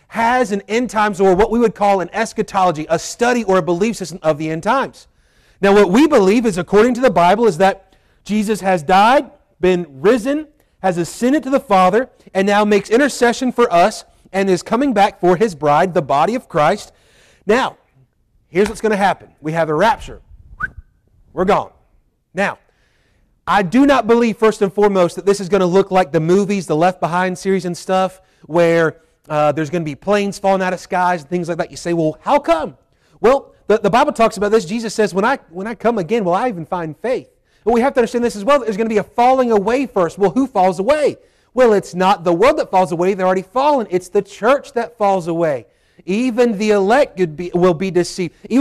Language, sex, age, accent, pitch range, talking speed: English, male, 30-49, American, 180-230 Hz, 225 wpm